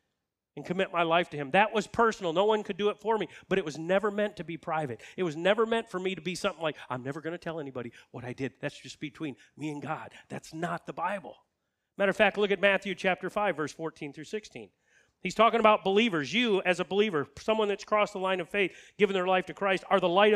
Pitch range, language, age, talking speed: 155-210 Hz, English, 40-59, 260 wpm